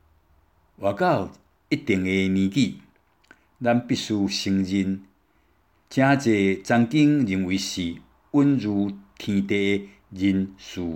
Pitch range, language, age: 80-120 Hz, Chinese, 60-79